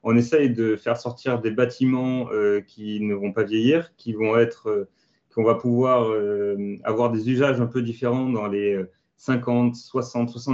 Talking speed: 175 wpm